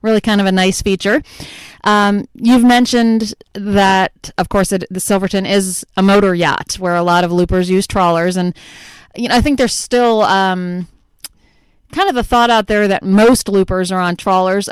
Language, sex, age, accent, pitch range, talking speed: English, female, 30-49, American, 180-215 Hz, 190 wpm